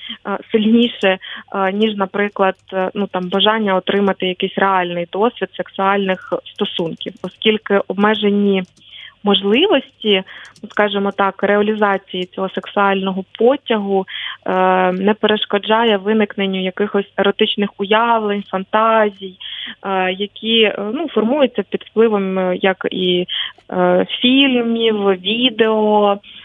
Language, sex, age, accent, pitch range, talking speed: Ukrainian, female, 20-39, native, 195-225 Hz, 85 wpm